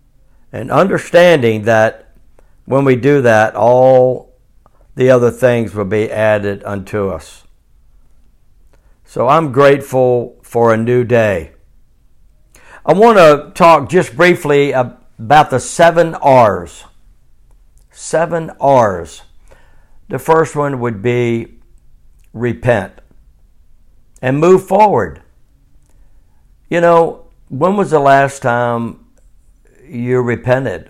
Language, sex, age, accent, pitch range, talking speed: English, male, 60-79, American, 95-130 Hz, 105 wpm